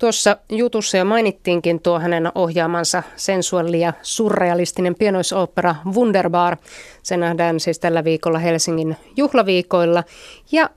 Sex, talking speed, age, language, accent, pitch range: female, 110 wpm, 30-49, Finnish, native, 175-215 Hz